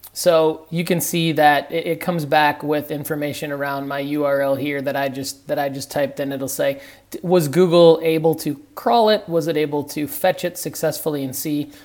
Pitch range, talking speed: 140-165 Hz, 195 wpm